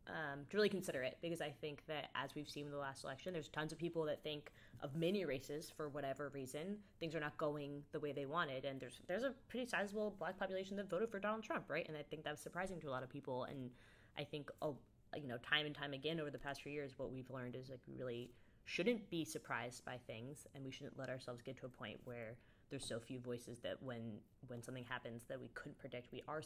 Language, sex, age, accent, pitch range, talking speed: English, female, 20-39, American, 125-155 Hz, 255 wpm